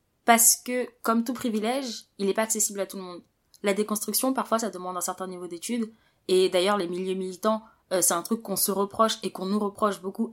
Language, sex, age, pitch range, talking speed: French, female, 20-39, 185-235 Hz, 225 wpm